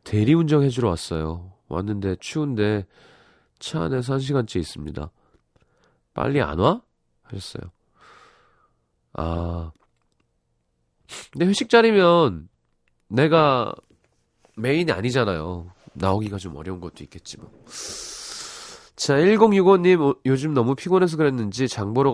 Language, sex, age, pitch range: Korean, male, 40-59, 90-145 Hz